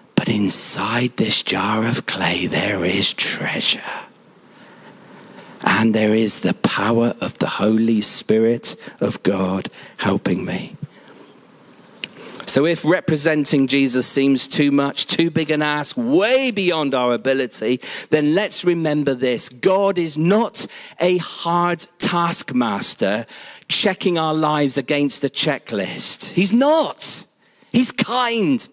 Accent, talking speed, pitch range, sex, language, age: British, 120 wpm, 130-185 Hz, male, English, 40-59